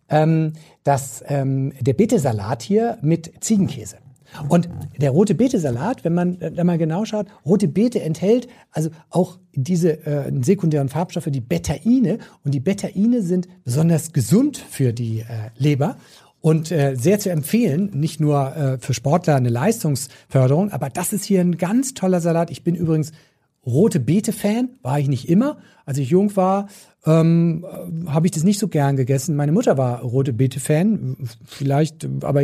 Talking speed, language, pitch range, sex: 160 wpm, German, 140-185 Hz, male